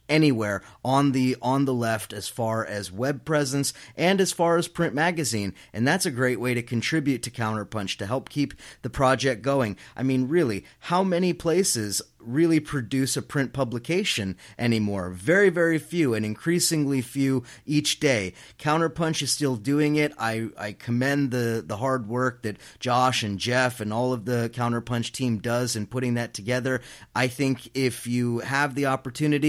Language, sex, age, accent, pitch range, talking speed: English, male, 30-49, American, 115-140 Hz, 175 wpm